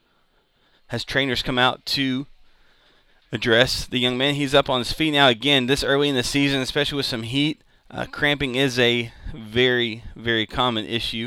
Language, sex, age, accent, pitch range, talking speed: English, male, 30-49, American, 110-145 Hz, 175 wpm